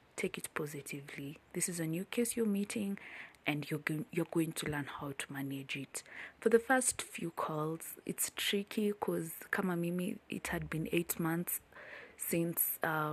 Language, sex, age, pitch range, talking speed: English, female, 20-39, 155-190 Hz, 175 wpm